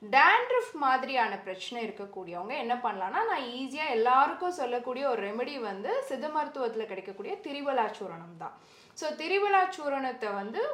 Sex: female